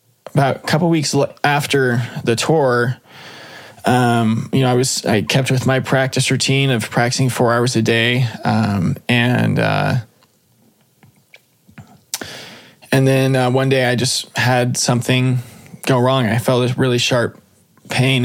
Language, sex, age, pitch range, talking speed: English, male, 20-39, 120-135 Hz, 150 wpm